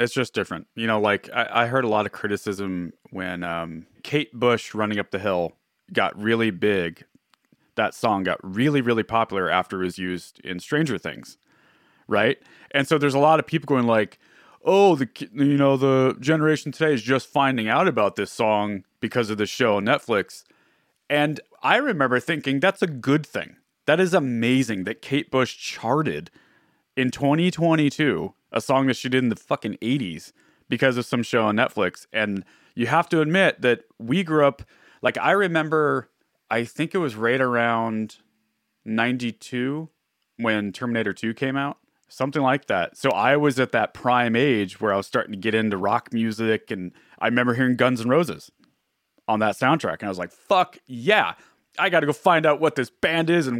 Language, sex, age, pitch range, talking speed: English, male, 30-49, 110-145 Hz, 190 wpm